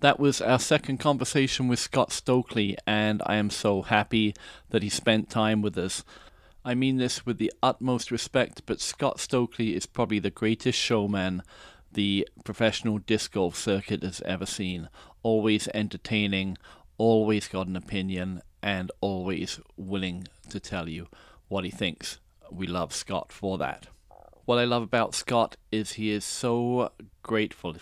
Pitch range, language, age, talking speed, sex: 95-115 Hz, English, 40-59, 155 wpm, male